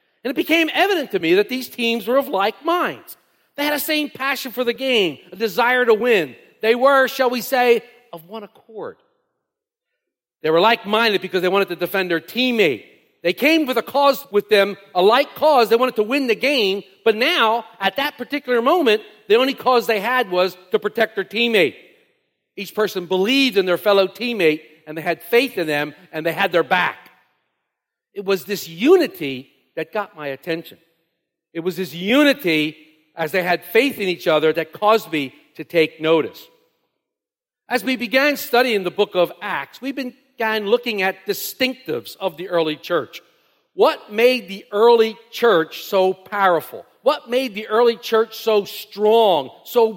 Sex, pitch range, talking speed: male, 185-255 Hz, 180 wpm